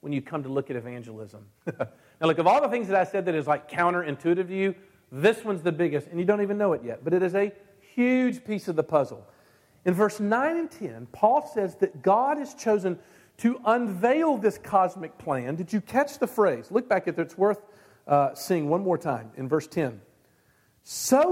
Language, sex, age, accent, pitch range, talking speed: English, male, 50-69, American, 140-205 Hz, 220 wpm